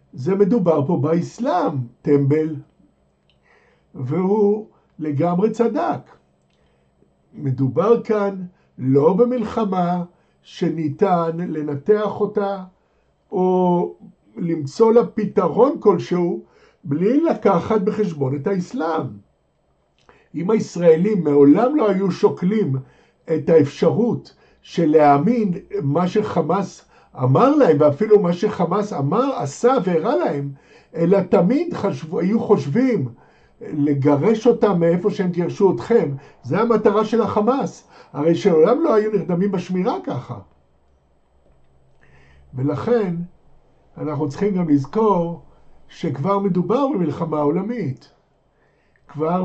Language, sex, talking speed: Hebrew, male, 95 wpm